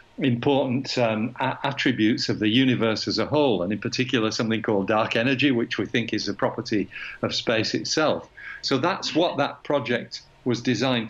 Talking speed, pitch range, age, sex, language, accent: 175 wpm, 110-130 Hz, 50-69, male, English, British